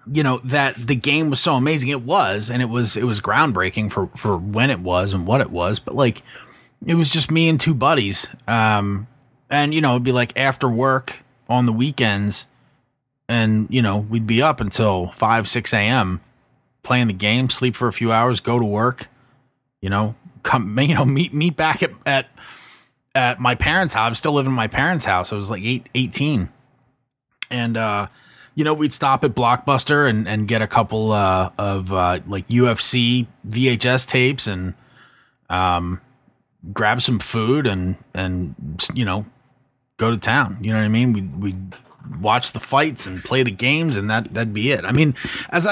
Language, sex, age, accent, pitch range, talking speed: English, male, 30-49, American, 110-135 Hz, 195 wpm